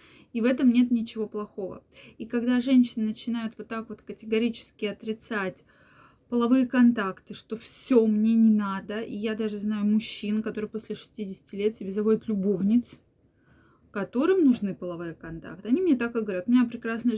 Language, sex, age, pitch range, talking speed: Russian, female, 20-39, 205-255 Hz, 160 wpm